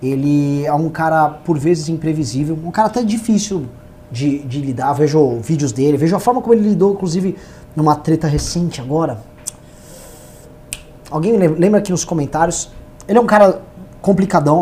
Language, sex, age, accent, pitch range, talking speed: Portuguese, male, 20-39, Brazilian, 155-215 Hz, 155 wpm